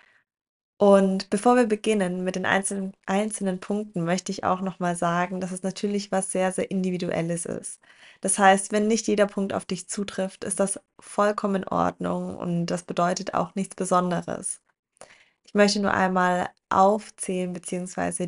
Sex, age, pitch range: female, 20-39, 175-200 Hz